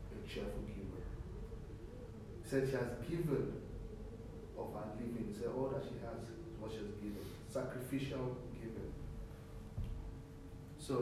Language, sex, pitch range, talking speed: English, male, 105-130 Hz, 140 wpm